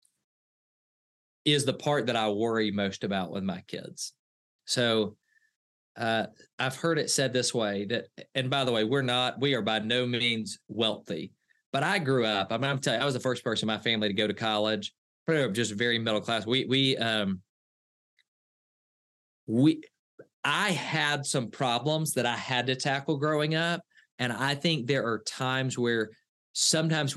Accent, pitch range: American, 110-140 Hz